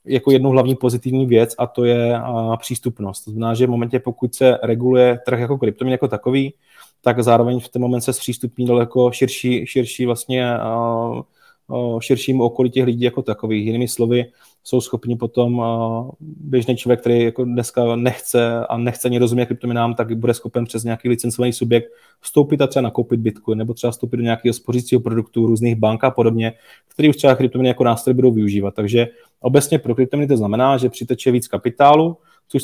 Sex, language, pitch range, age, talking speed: male, Czech, 115-125 Hz, 20-39, 180 wpm